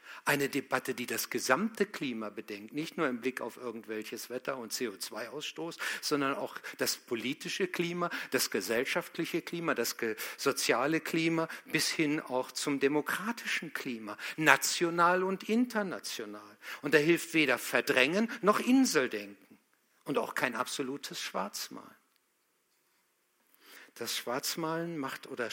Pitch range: 125-175 Hz